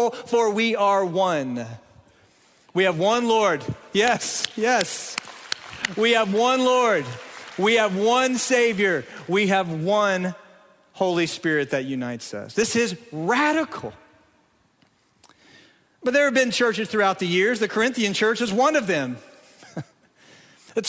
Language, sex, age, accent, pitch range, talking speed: English, male, 40-59, American, 185-225 Hz, 130 wpm